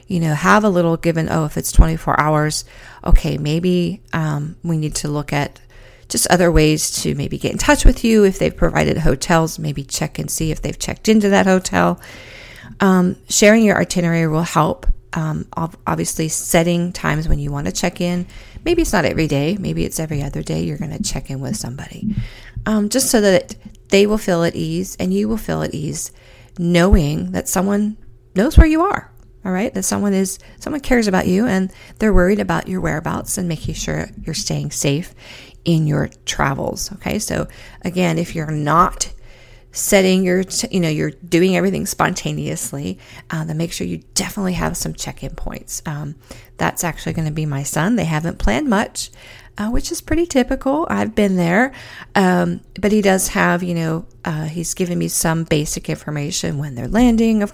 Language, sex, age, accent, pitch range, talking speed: English, female, 40-59, American, 150-190 Hz, 190 wpm